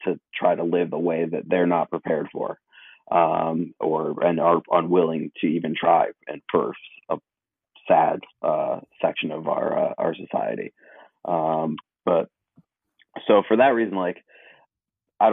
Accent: American